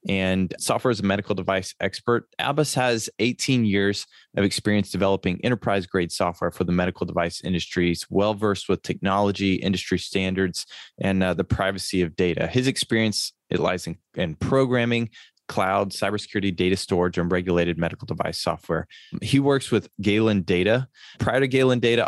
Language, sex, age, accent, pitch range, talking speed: English, male, 20-39, American, 95-120 Hz, 155 wpm